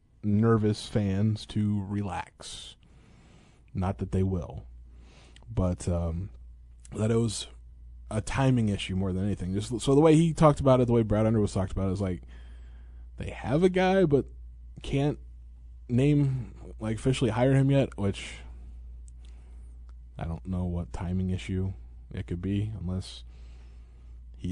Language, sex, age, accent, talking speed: English, male, 20-39, American, 150 wpm